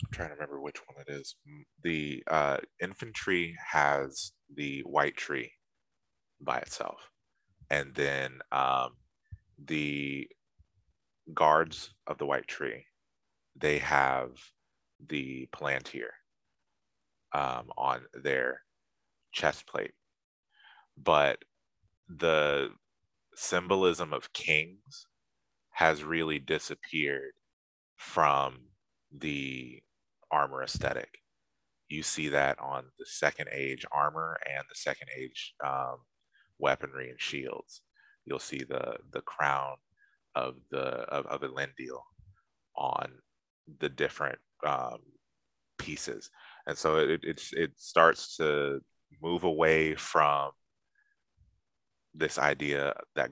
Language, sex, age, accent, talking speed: English, male, 30-49, American, 100 wpm